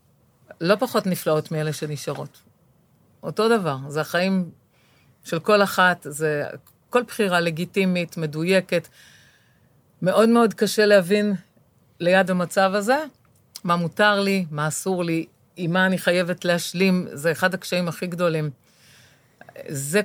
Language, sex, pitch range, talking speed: Hebrew, female, 150-190 Hz, 125 wpm